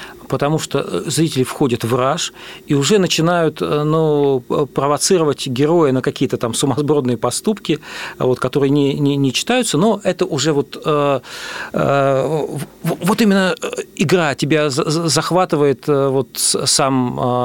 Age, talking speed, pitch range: 40-59, 115 wpm, 135-175 Hz